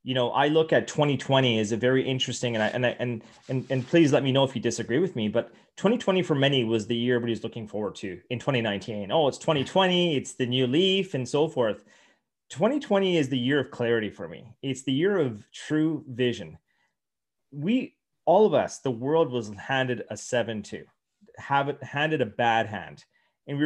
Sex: male